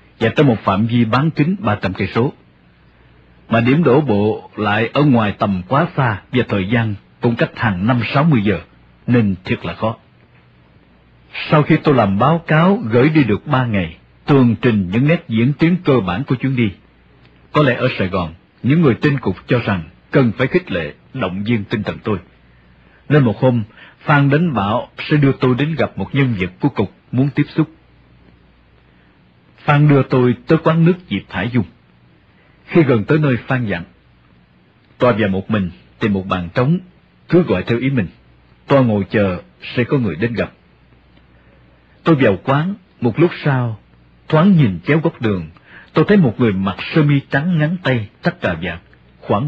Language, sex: English, male